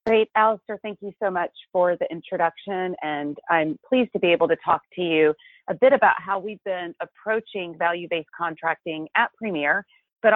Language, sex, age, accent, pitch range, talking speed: English, female, 30-49, American, 160-200 Hz, 180 wpm